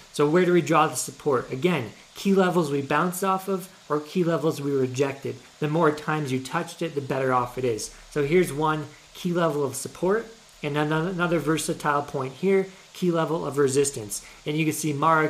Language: English